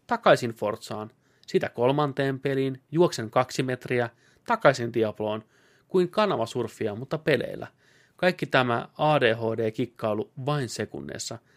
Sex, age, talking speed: male, 30-49, 100 wpm